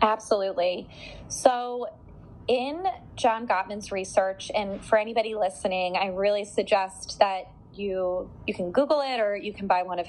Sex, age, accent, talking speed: female, 20-39, American, 150 wpm